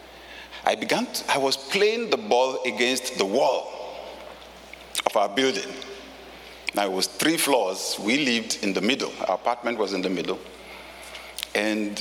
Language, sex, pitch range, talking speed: English, male, 135-225 Hz, 155 wpm